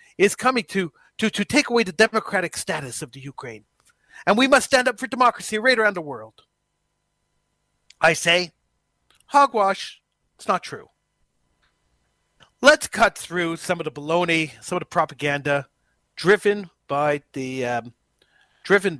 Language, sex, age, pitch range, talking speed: English, male, 40-59, 145-200 Hz, 145 wpm